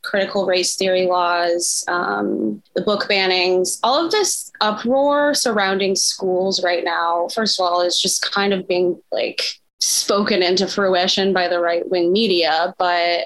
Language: English